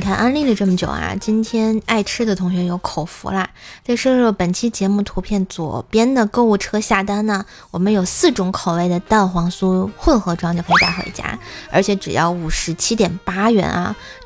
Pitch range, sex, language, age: 180-230 Hz, female, Chinese, 20-39